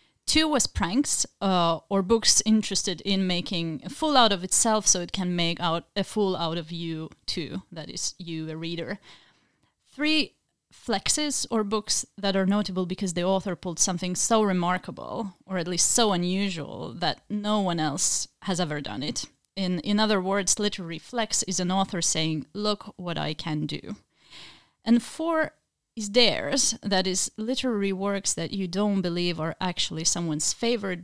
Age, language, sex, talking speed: 30-49, English, female, 170 wpm